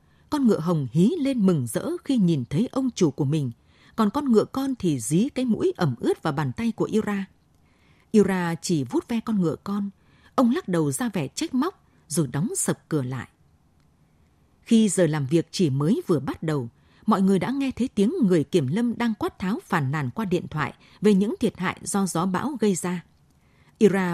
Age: 20-39